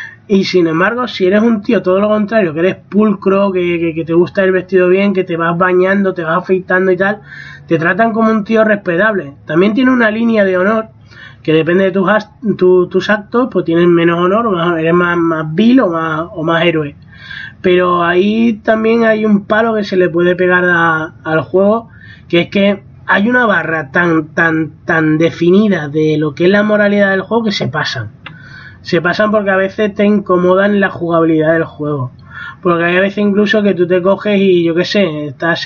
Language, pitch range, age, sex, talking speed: Spanish, 170-210 Hz, 20-39, male, 205 wpm